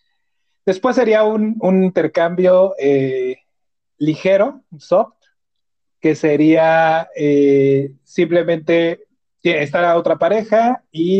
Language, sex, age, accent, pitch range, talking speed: Spanish, male, 30-49, Mexican, 145-190 Hz, 90 wpm